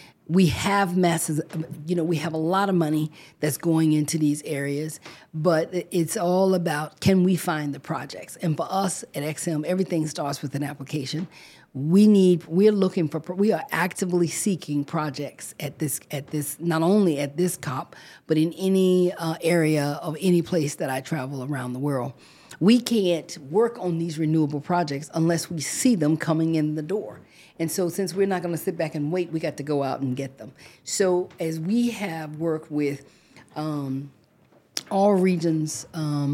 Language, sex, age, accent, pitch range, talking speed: English, female, 40-59, American, 150-175 Hz, 185 wpm